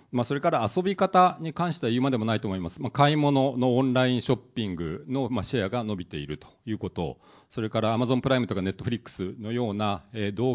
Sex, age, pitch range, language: male, 40-59, 105-140 Hz, Japanese